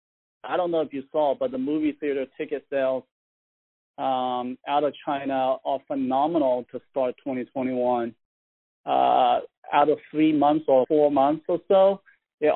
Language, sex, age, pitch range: English, male, 40-59, 125-150 Hz